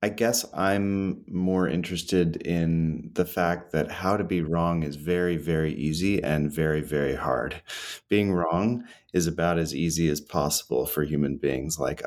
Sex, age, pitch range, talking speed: male, 30-49, 75-90 Hz, 165 wpm